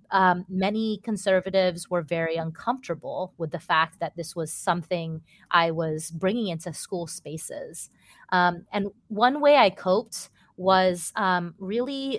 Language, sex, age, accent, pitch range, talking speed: English, female, 30-49, American, 180-210 Hz, 140 wpm